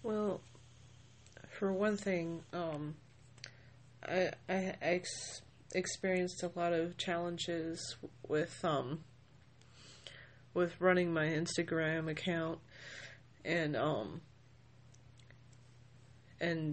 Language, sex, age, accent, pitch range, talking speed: English, female, 30-49, American, 125-170 Hz, 80 wpm